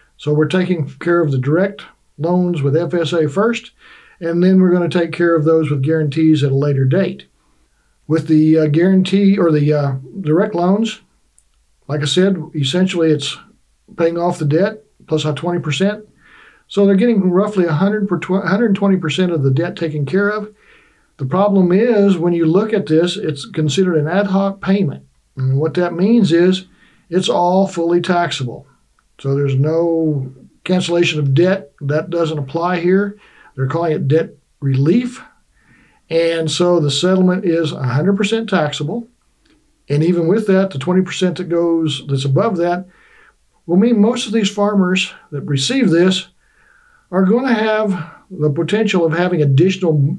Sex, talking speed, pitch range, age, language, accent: male, 155 wpm, 155-195 Hz, 60-79, English, American